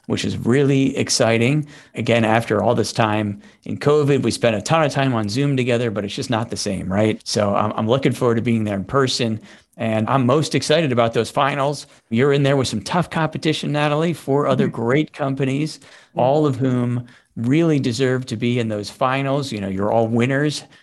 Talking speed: 205 wpm